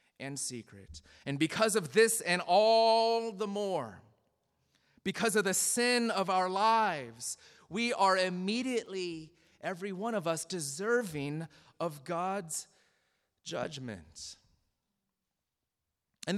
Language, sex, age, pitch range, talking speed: English, male, 30-49, 175-240 Hz, 105 wpm